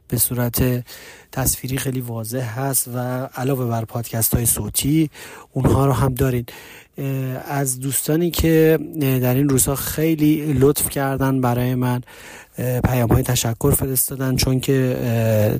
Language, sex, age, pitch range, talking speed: Persian, male, 30-49, 120-140 Hz, 120 wpm